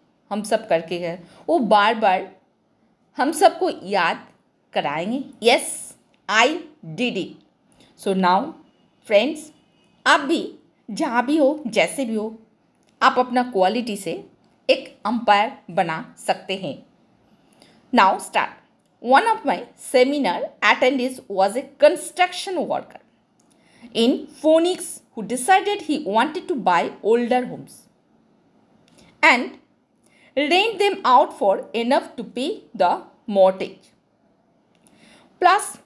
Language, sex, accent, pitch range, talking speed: Hindi, female, native, 215-305 Hz, 110 wpm